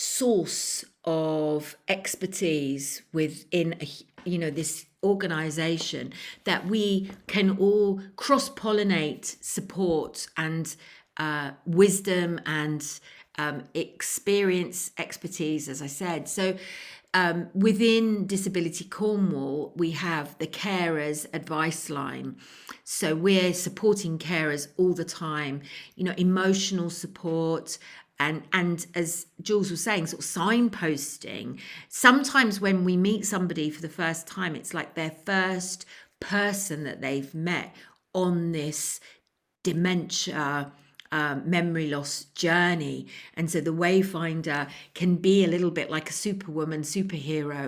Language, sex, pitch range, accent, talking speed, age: English, female, 155-185 Hz, British, 115 wpm, 50-69